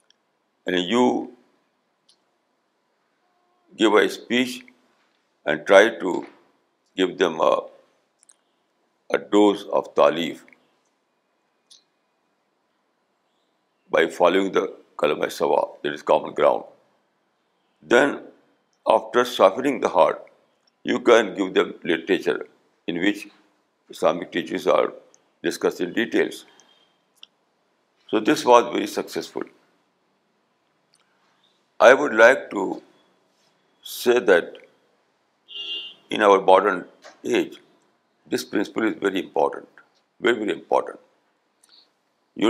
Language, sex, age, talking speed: Urdu, male, 60-79, 90 wpm